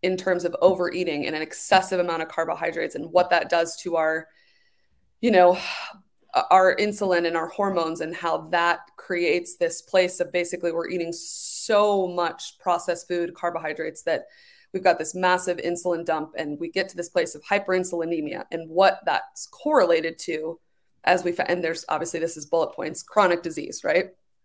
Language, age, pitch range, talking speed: English, 20-39, 170-195 Hz, 170 wpm